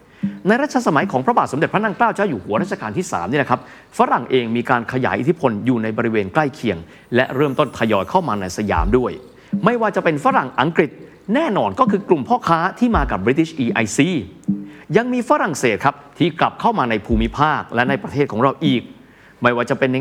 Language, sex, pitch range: Thai, male, 120-195 Hz